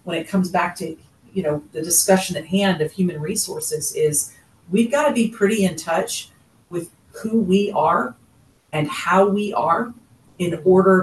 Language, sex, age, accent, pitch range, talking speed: English, female, 40-59, American, 155-210 Hz, 175 wpm